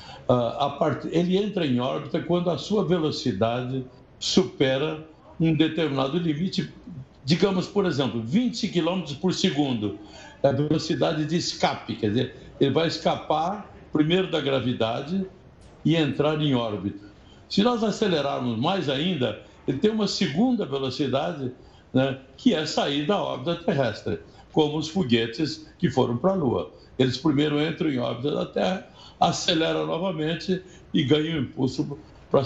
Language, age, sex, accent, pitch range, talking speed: Portuguese, 60-79, male, Brazilian, 125-175 Hz, 140 wpm